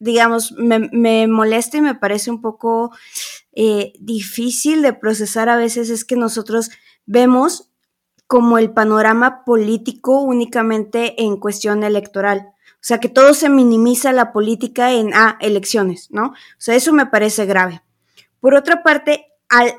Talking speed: 150 wpm